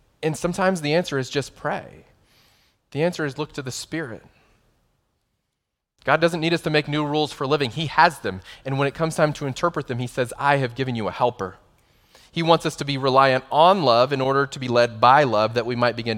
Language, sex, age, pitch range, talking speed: English, male, 30-49, 110-145 Hz, 230 wpm